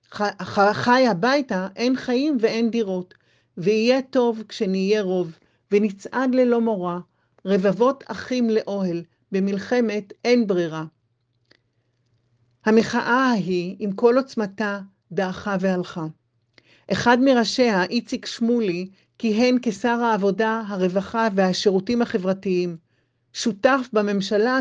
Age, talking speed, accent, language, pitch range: 40-59, 95 wpm, native, Hebrew, 185-235 Hz